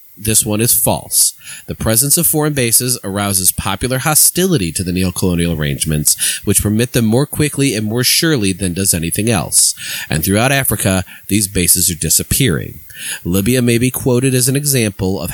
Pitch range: 95-130 Hz